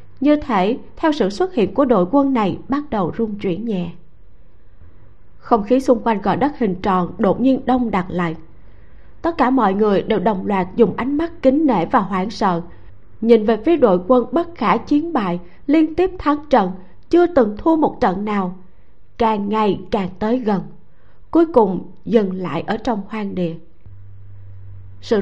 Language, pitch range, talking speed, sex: Vietnamese, 180-260 Hz, 180 wpm, female